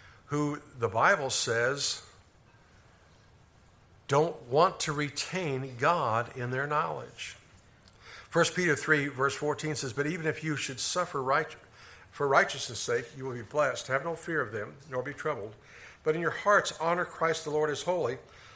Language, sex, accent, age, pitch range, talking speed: English, male, American, 60-79, 115-175 Hz, 160 wpm